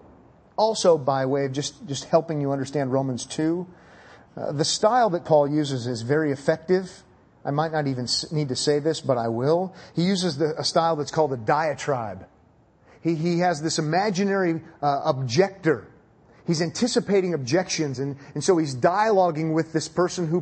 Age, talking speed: 30-49, 175 wpm